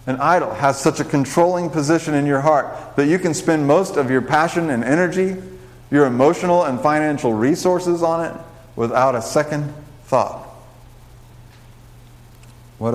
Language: English